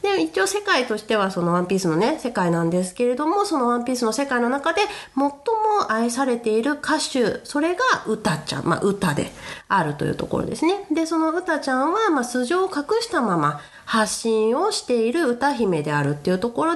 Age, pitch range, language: 30-49, 180-285 Hz, Japanese